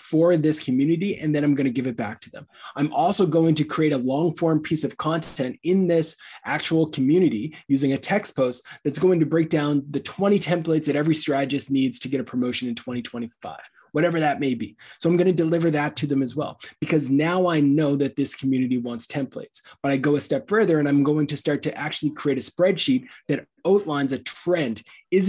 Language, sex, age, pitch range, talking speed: English, male, 20-39, 135-165 Hz, 220 wpm